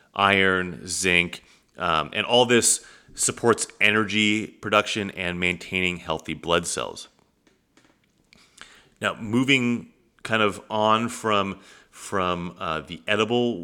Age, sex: 30-49, male